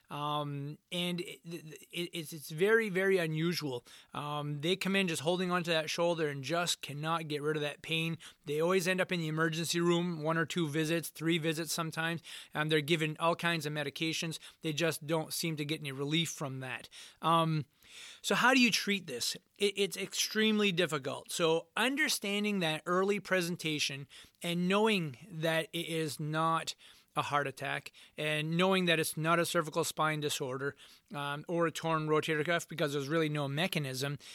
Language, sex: English, male